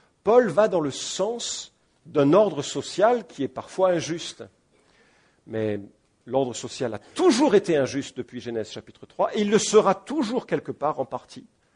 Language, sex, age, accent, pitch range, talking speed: English, male, 50-69, French, 115-175 Hz, 165 wpm